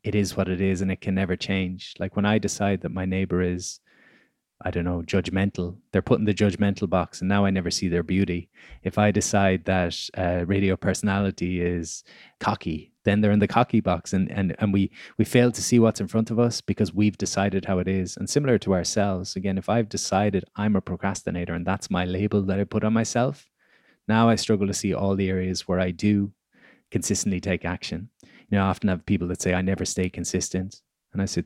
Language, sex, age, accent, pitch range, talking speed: English, male, 20-39, Irish, 95-105 Hz, 225 wpm